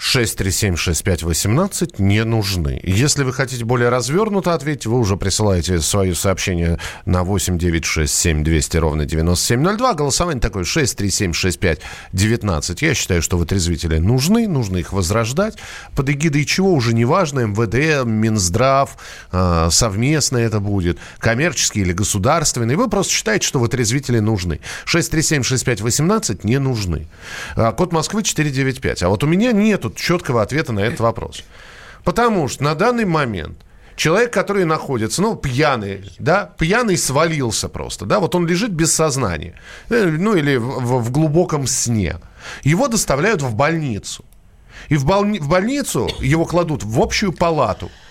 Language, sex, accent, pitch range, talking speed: Russian, male, native, 95-160 Hz, 150 wpm